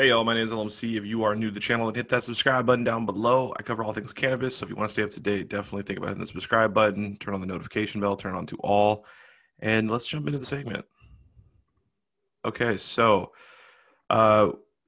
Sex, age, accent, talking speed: male, 20-39, American, 235 wpm